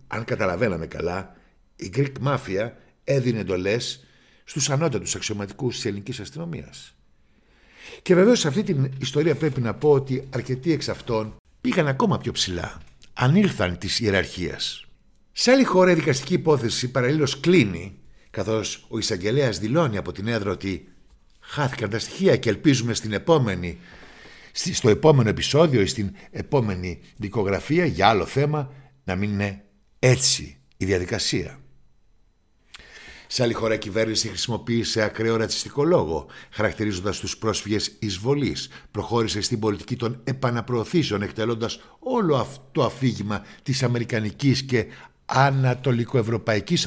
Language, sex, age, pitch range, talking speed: Greek, male, 60-79, 100-130 Hz, 130 wpm